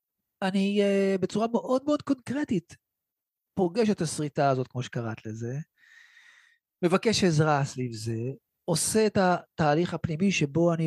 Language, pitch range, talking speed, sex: Hebrew, 155-210 Hz, 125 wpm, male